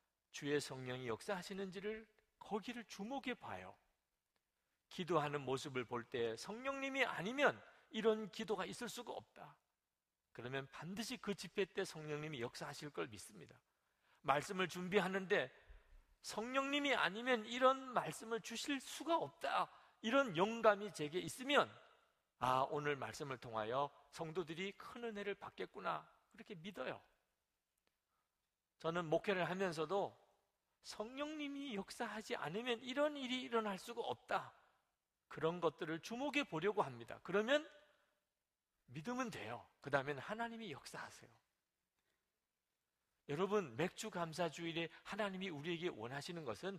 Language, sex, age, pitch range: Korean, male, 40-59, 165-245 Hz